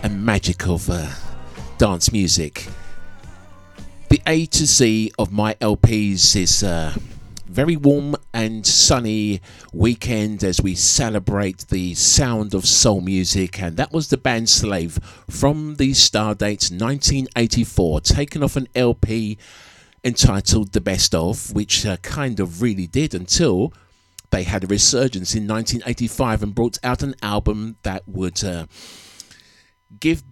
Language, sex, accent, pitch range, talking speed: English, male, British, 95-125 Hz, 135 wpm